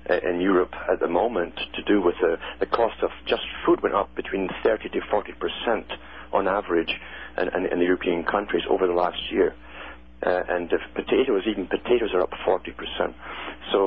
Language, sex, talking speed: English, male, 185 wpm